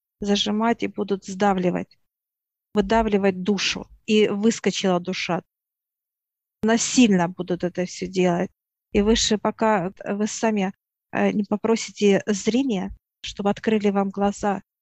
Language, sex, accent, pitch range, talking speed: Russian, female, native, 200-220 Hz, 105 wpm